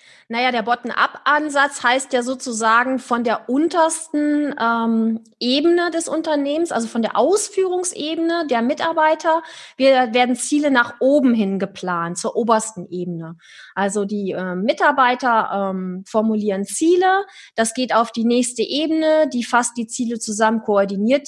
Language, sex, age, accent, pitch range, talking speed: German, female, 30-49, German, 210-270 Hz, 135 wpm